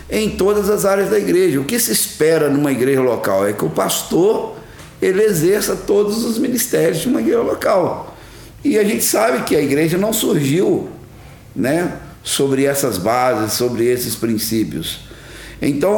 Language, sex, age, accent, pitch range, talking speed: Portuguese, male, 50-69, Brazilian, 100-170 Hz, 160 wpm